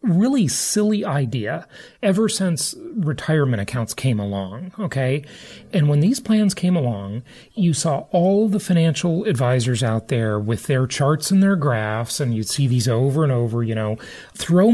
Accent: American